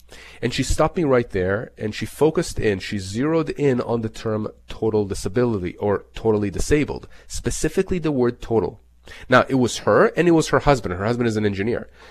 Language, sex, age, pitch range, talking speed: English, male, 30-49, 110-145 Hz, 195 wpm